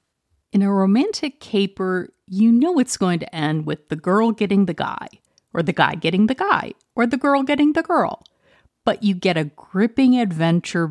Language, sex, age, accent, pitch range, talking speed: English, female, 50-69, American, 170-235 Hz, 185 wpm